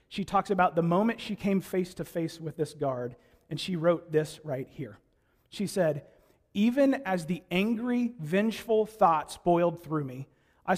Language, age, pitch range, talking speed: English, 40-59, 155-200 Hz, 175 wpm